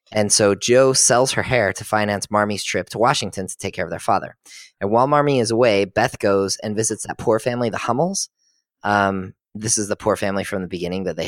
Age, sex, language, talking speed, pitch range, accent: 20-39, male, English, 230 wpm, 95-115 Hz, American